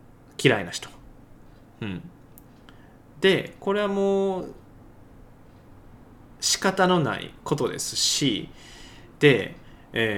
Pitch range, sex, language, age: 120-150 Hz, male, Japanese, 20-39